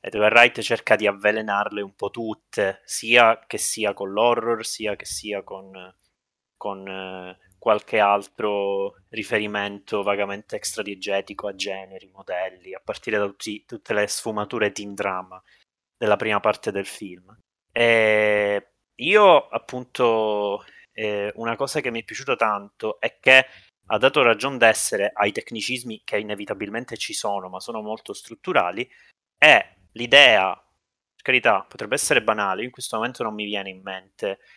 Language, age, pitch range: Italian, 20-39, 95-110 Hz